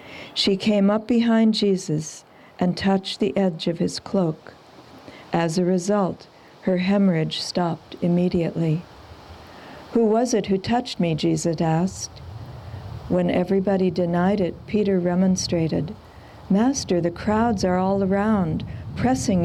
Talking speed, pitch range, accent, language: 125 wpm, 170-205 Hz, American, English